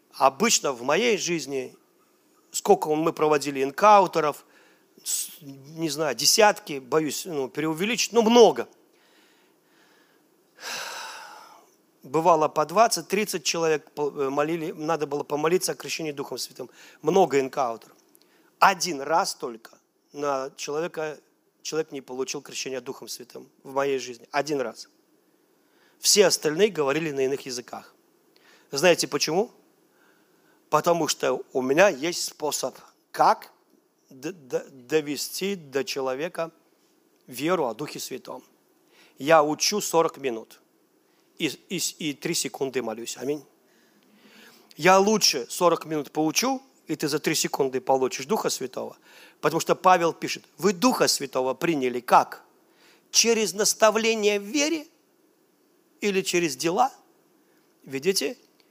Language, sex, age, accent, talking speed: Russian, male, 40-59, native, 110 wpm